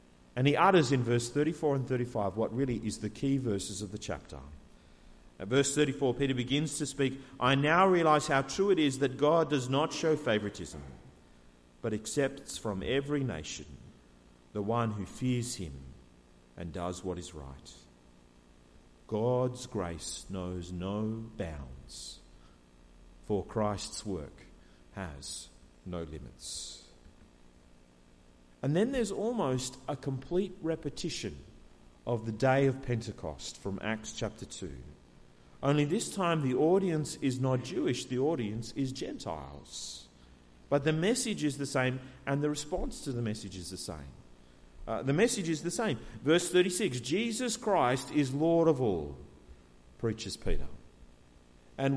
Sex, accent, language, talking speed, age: male, Australian, English, 140 wpm, 50-69